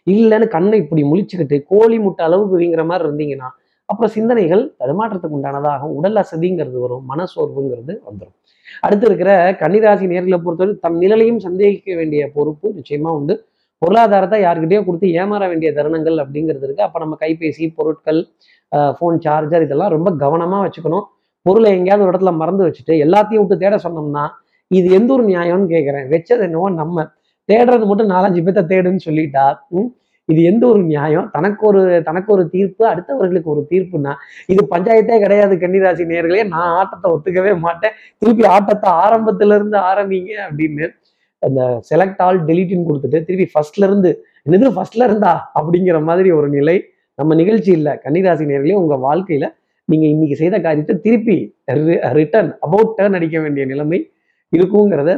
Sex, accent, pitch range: male, native, 155-205 Hz